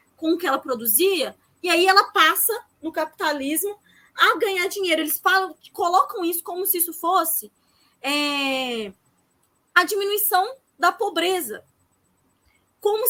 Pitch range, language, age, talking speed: 270-365 Hz, Portuguese, 20-39, 135 wpm